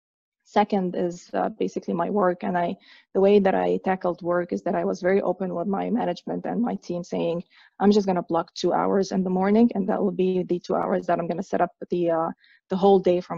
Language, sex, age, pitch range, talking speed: English, female, 20-39, 170-200 Hz, 250 wpm